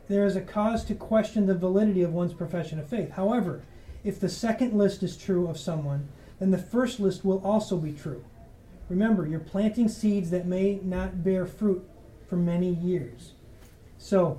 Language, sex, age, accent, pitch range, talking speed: English, male, 30-49, American, 175-210 Hz, 180 wpm